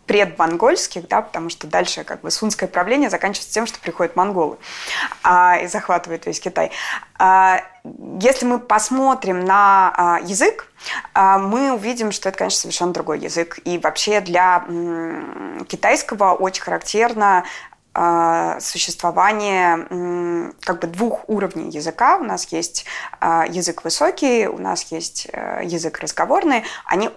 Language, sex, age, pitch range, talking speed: Russian, female, 20-39, 170-215 Hz, 115 wpm